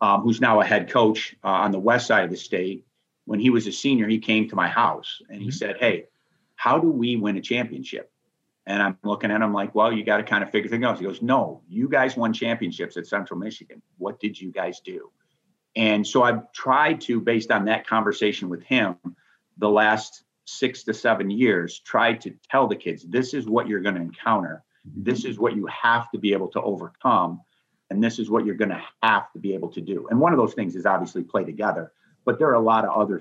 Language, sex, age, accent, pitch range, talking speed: English, male, 50-69, American, 100-115 Hz, 240 wpm